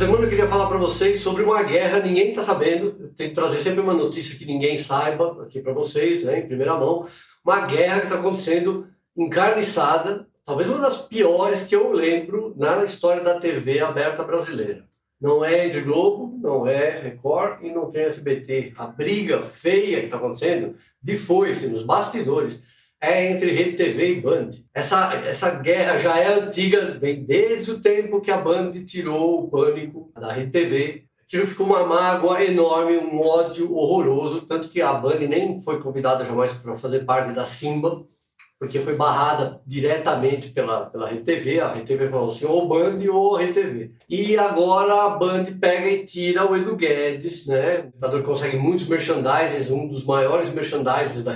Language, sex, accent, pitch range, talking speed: Portuguese, male, Brazilian, 145-195 Hz, 180 wpm